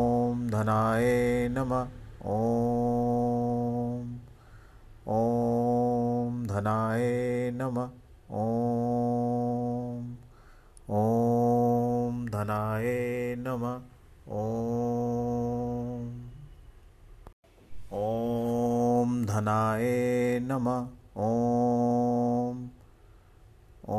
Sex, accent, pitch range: male, native, 110-120 Hz